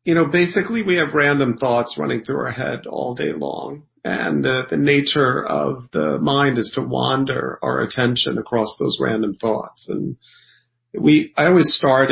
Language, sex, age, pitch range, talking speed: English, male, 40-59, 115-150 Hz, 175 wpm